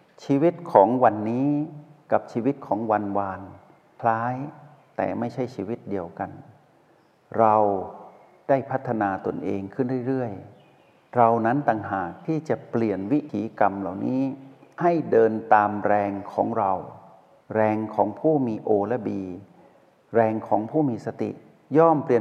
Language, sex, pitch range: Thai, male, 105-140 Hz